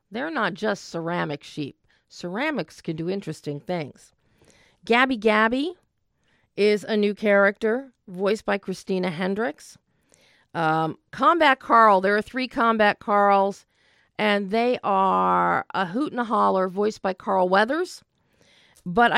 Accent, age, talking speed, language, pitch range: American, 40-59, 130 wpm, English, 175-225 Hz